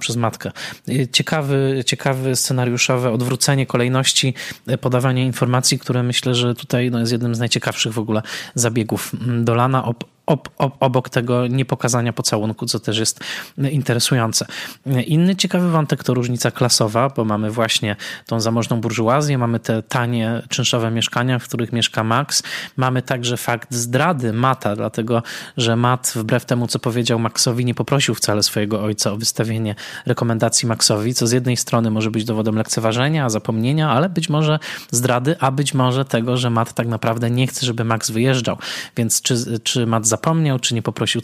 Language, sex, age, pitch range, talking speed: Polish, male, 20-39, 115-130 Hz, 155 wpm